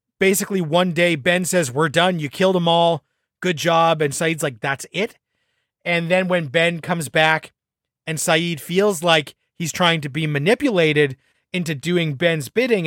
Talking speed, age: 175 wpm, 30-49